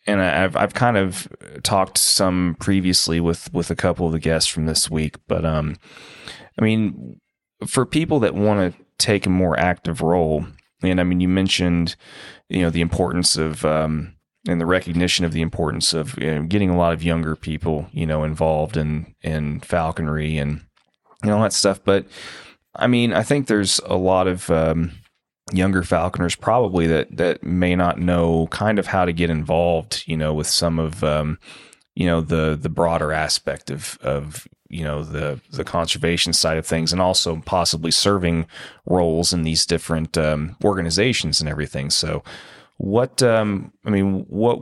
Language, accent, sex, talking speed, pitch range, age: English, American, male, 180 wpm, 80-95 Hz, 30-49